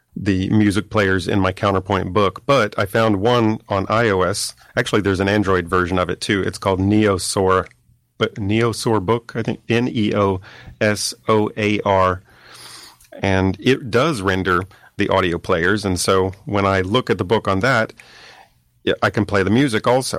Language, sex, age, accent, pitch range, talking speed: English, male, 40-59, American, 100-115 Hz, 175 wpm